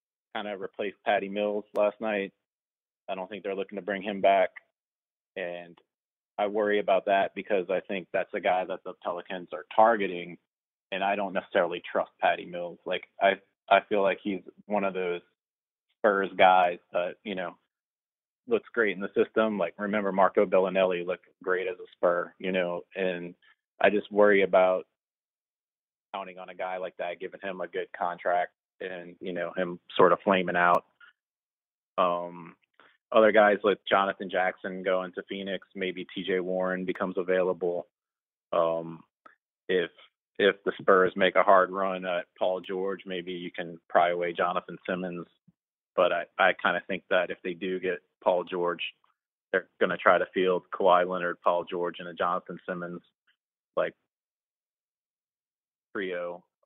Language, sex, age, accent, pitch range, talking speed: English, male, 30-49, American, 85-95 Hz, 165 wpm